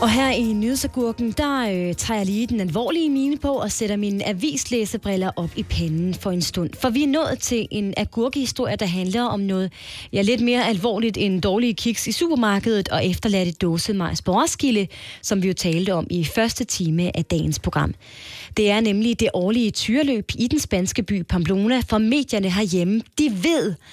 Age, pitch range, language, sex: 20-39, 190-245 Hz, Danish, female